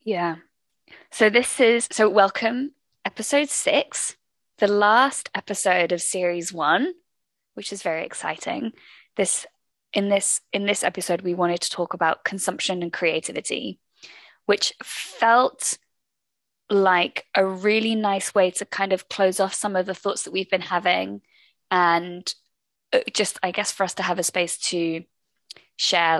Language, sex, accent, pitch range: English, female, British, 175-220 Hz